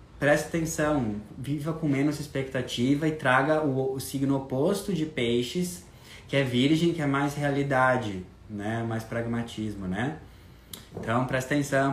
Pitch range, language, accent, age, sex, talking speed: 115-140 Hz, Portuguese, Brazilian, 20-39, male, 140 wpm